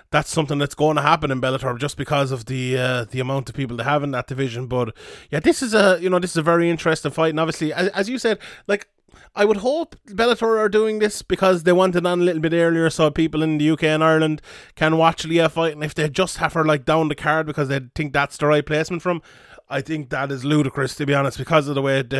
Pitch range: 140-175 Hz